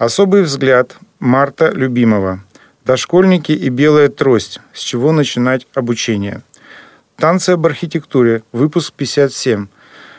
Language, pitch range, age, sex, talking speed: Russian, 115-155 Hz, 40-59, male, 100 wpm